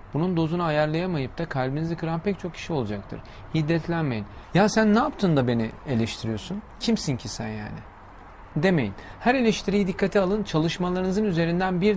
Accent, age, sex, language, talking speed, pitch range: native, 40-59, male, Turkish, 150 wpm, 135-185 Hz